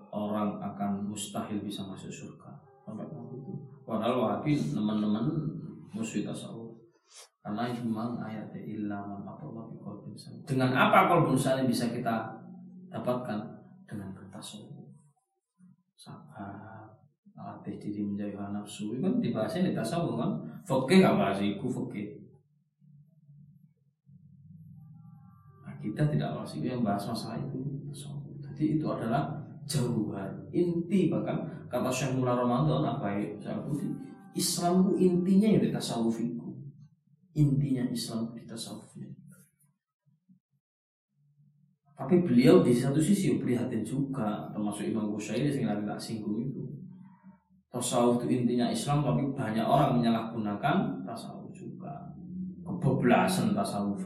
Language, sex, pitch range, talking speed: Malay, male, 115-170 Hz, 105 wpm